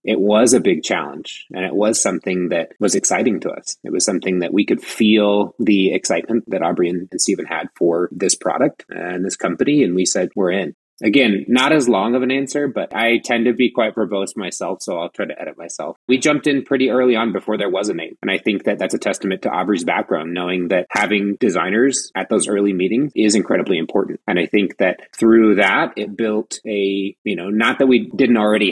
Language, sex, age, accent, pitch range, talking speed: English, male, 30-49, American, 95-115 Hz, 225 wpm